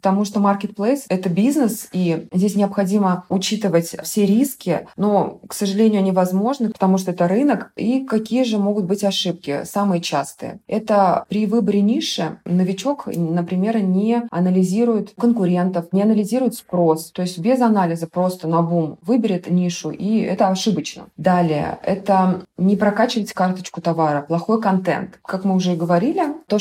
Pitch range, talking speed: 180-210 Hz, 150 wpm